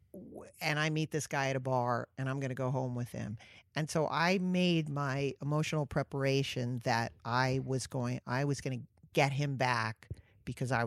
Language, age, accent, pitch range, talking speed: English, 50-69, American, 125-170 Hz, 200 wpm